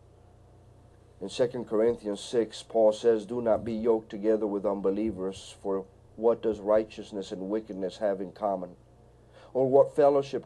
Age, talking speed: 50-69, 145 wpm